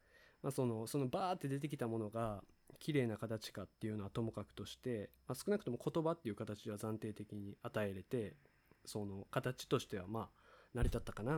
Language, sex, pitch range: Japanese, male, 105-135 Hz